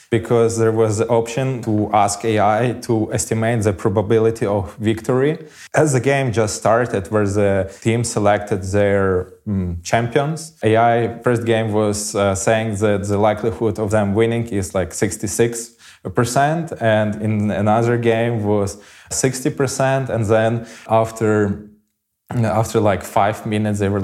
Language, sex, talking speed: English, male, 140 wpm